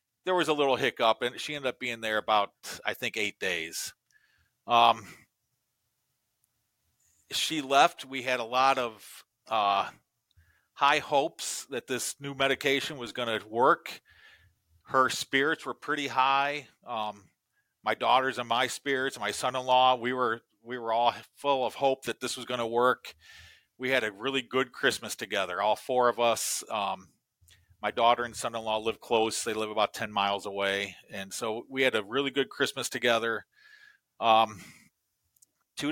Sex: male